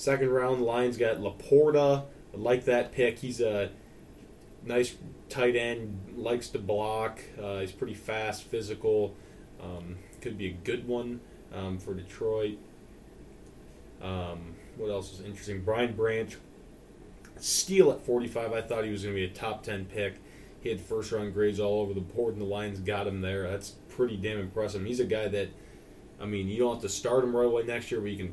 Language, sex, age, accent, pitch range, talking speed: English, male, 20-39, American, 100-120 Hz, 190 wpm